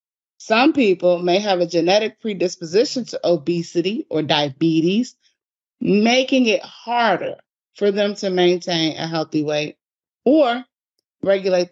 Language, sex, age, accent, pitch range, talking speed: English, female, 30-49, American, 165-210 Hz, 120 wpm